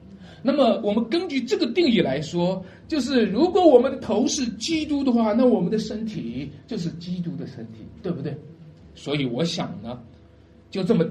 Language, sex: Chinese, male